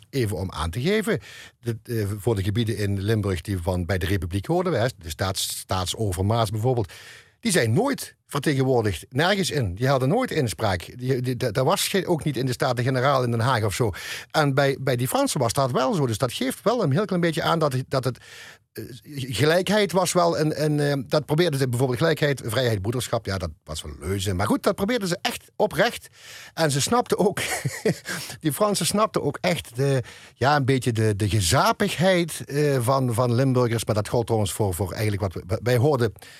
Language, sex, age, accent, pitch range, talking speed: Dutch, male, 50-69, Dutch, 105-150 Hz, 210 wpm